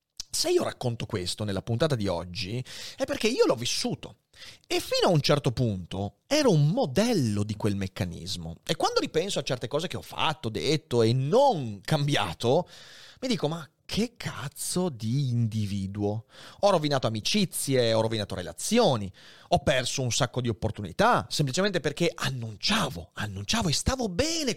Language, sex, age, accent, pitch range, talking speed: Italian, male, 30-49, native, 125-180 Hz, 155 wpm